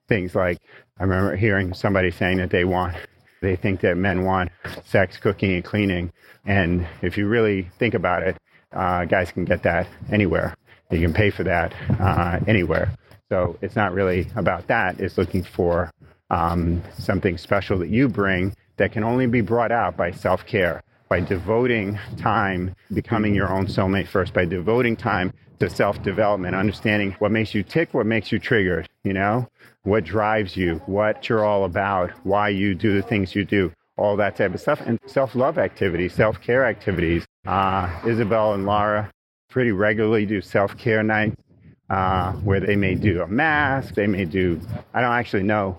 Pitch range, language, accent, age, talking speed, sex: 95-110 Hz, English, American, 40-59, 175 wpm, male